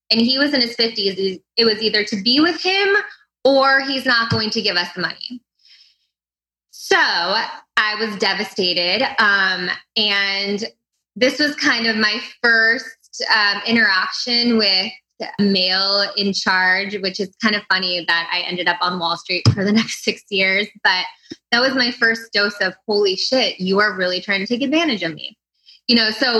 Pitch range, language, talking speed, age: 185-230 Hz, English, 180 wpm, 20-39